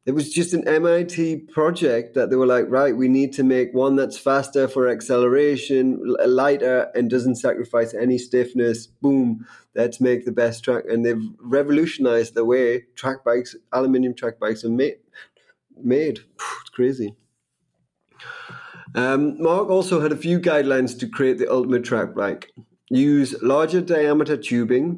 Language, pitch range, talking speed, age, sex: English, 115-140 Hz, 150 wpm, 30-49, male